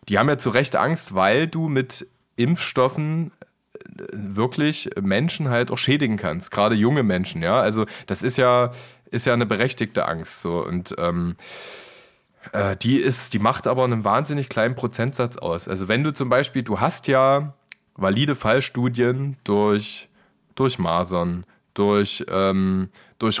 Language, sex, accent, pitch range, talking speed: German, male, German, 105-140 Hz, 140 wpm